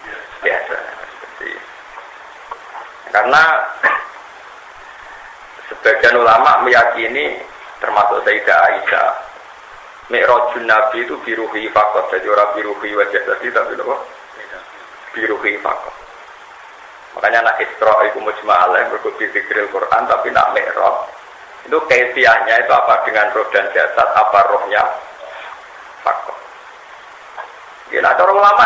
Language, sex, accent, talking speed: Indonesian, male, native, 100 wpm